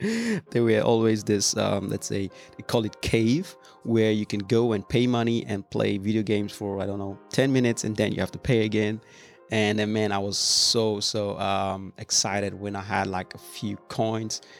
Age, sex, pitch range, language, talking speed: 30-49, male, 100-110 Hz, English, 210 wpm